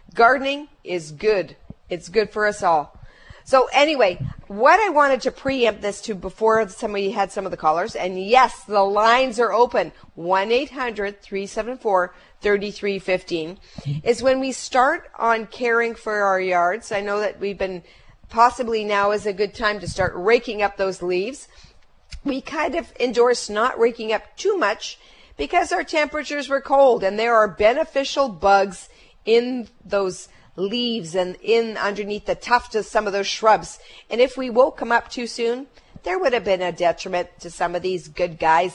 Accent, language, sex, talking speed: American, English, female, 170 wpm